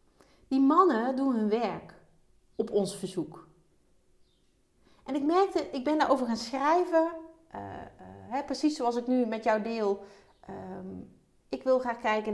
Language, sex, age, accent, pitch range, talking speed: Dutch, female, 30-49, Dutch, 200-270 Hz, 150 wpm